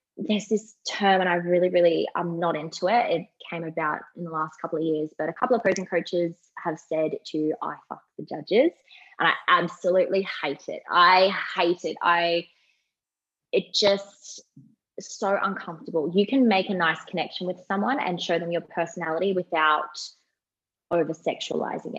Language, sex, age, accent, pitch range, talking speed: English, female, 20-39, Australian, 170-205 Hz, 170 wpm